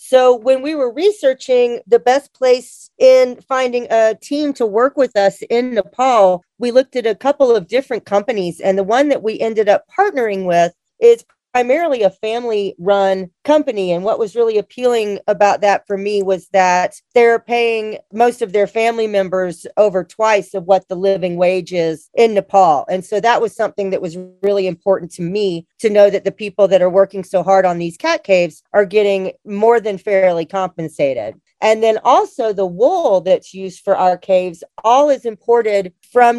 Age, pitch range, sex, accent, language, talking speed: 40-59, 190-240 Hz, female, American, English, 185 wpm